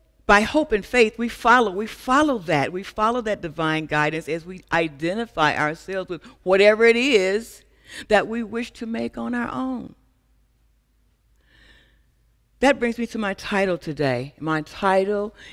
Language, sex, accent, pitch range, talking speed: English, female, American, 155-215 Hz, 150 wpm